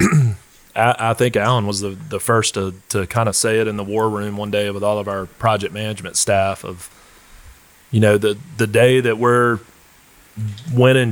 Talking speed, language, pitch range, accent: 190 wpm, English, 100-115 Hz, American